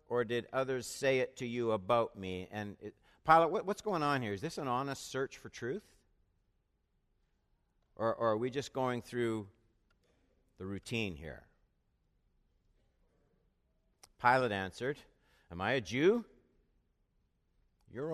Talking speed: 135 wpm